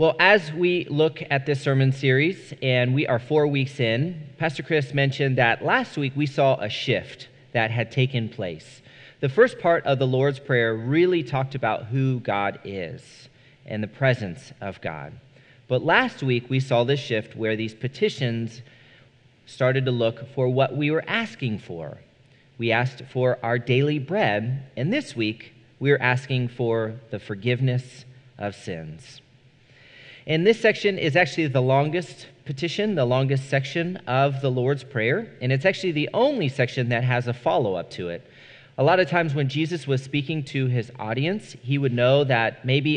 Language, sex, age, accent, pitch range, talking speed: English, male, 40-59, American, 120-145 Hz, 175 wpm